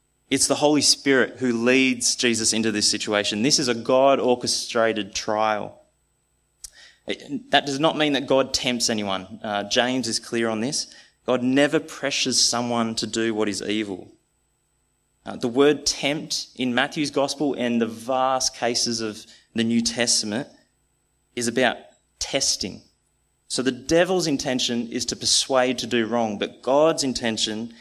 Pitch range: 115-140 Hz